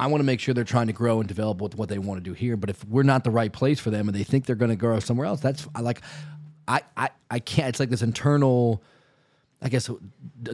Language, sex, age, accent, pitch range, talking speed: English, male, 30-49, American, 110-135 Hz, 255 wpm